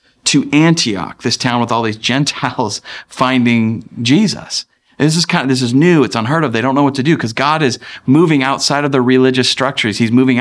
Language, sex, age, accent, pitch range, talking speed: English, male, 30-49, American, 115-140 Hz, 215 wpm